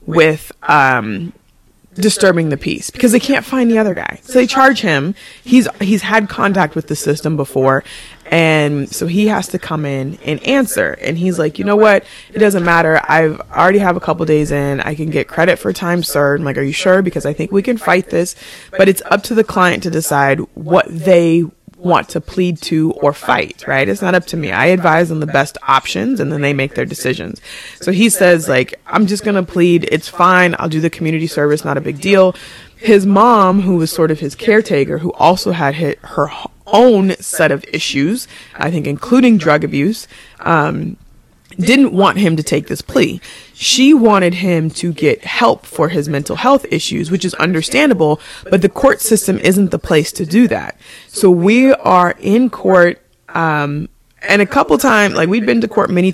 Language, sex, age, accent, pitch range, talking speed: English, female, 20-39, American, 160-205 Hz, 205 wpm